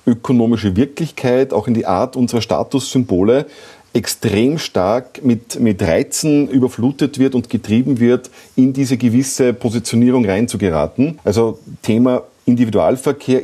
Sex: male